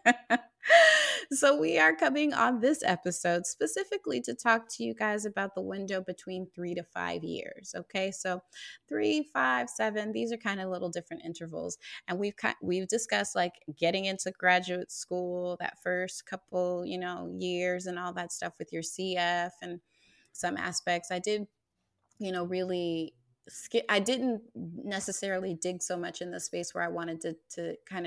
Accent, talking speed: American, 165 wpm